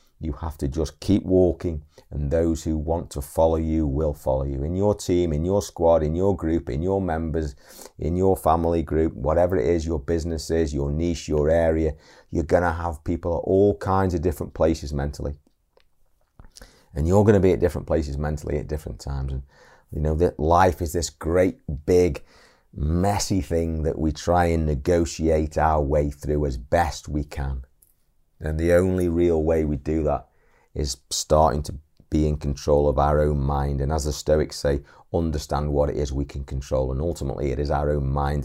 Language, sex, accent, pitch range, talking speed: English, male, British, 70-85 Hz, 195 wpm